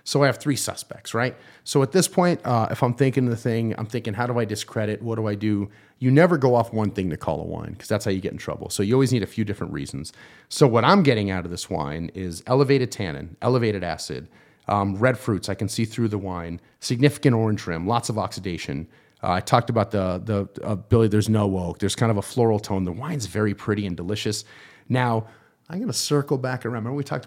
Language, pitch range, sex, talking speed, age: English, 95-125 Hz, male, 245 wpm, 30-49